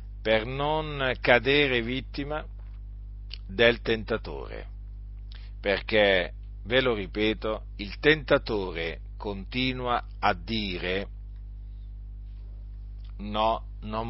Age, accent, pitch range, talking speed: 50-69, native, 100-120 Hz, 70 wpm